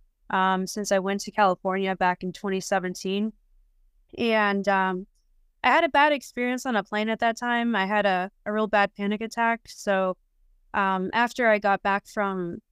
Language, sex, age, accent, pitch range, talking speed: English, female, 20-39, American, 190-220 Hz, 175 wpm